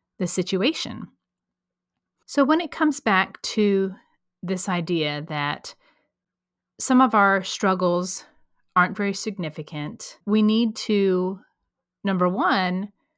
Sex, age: female, 30-49